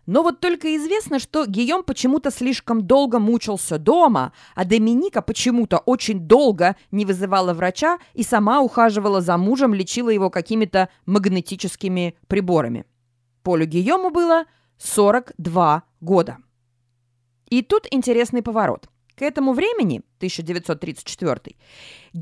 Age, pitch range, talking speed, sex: 20-39, 175-260 Hz, 115 wpm, female